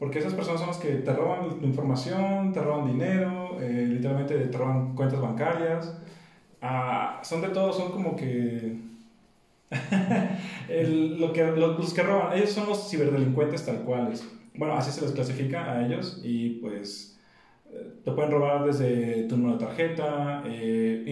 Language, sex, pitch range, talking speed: Spanish, male, 125-170 Hz, 160 wpm